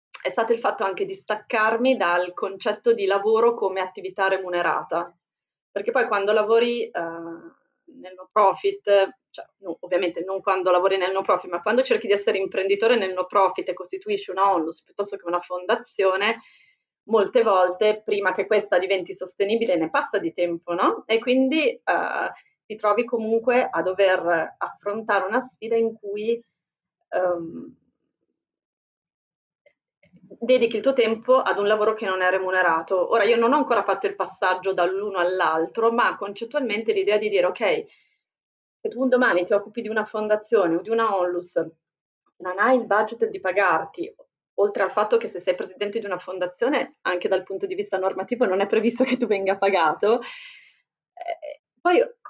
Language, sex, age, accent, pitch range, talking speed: Italian, female, 20-39, native, 185-240 Hz, 165 wpm